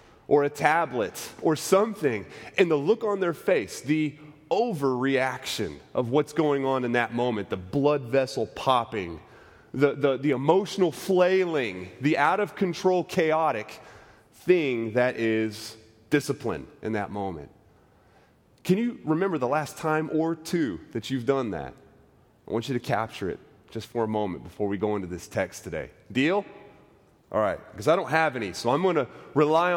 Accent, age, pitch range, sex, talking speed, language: American, 30-49, 115-155 Hz, male, 165 wpm, English